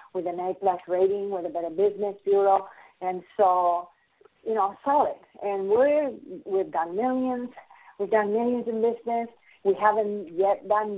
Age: 50-69